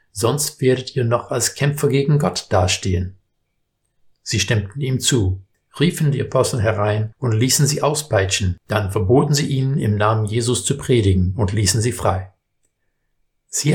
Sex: male